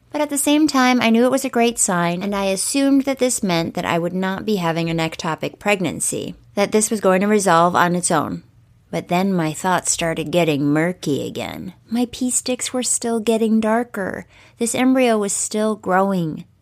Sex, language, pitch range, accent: female, English, 175-235 Hz, American